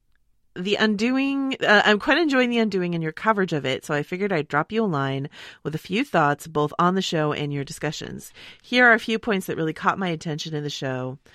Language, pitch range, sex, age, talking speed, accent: English, 150-200 Hz, female, 30-49, 240 wpm, American